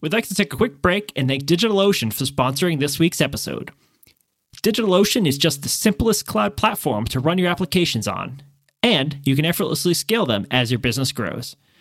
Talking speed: 190 wpm